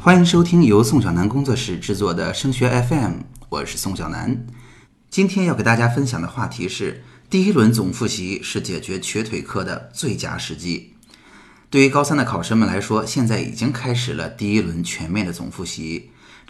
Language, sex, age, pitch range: Chinese, male, 30-49, 100-140 Hz